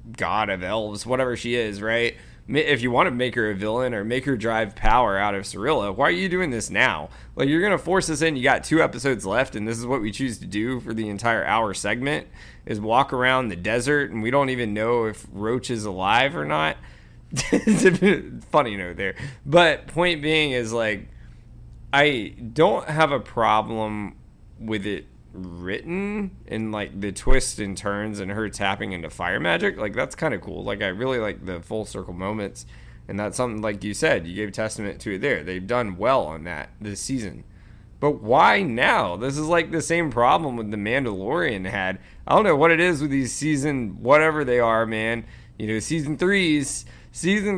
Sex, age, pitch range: male, 20-39, 105-150 Hz